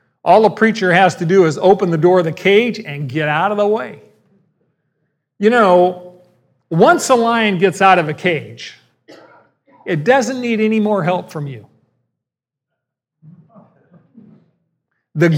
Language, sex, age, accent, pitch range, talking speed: English, male, 50-69, American, 155-205 Hz, 150 wpm